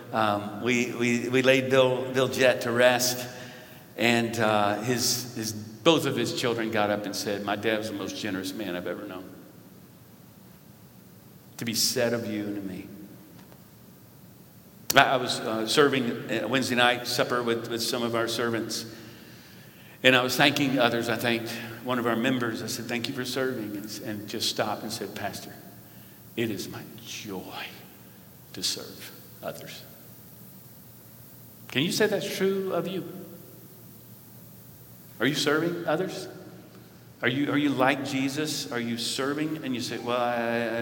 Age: 50-69